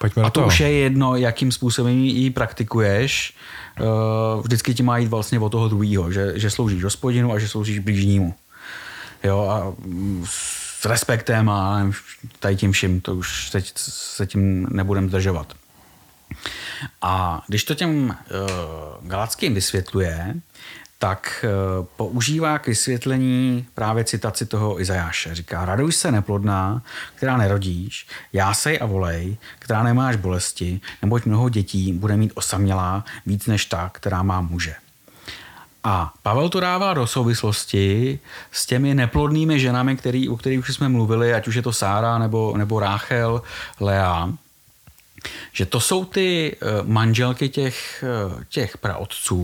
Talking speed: 135 wpm